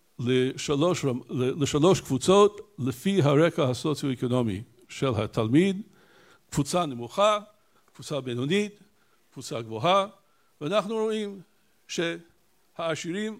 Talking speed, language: 75 wpm, Hebrew